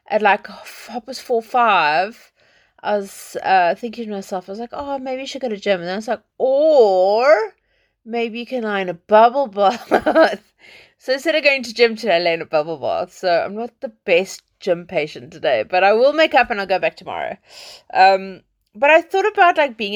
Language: English